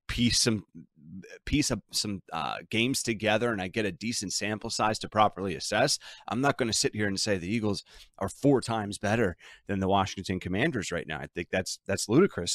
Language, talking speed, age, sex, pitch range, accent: English, 205 wpm, 30-49, male, 90-110 Hz, American